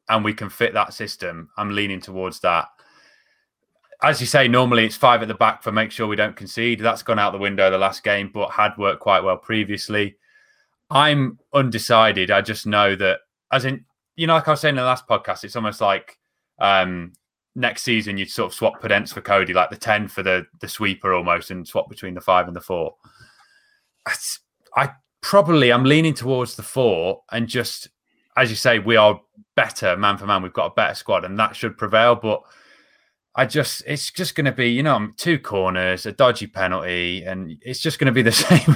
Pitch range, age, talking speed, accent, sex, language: 100-130 Hz, 20-39, 215 wpm, British, male, English